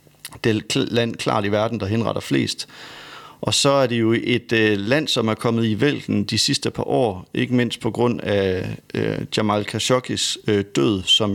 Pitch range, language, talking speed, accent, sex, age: 105-120 Hz, English, 200 wpm, Danish, male, 40-59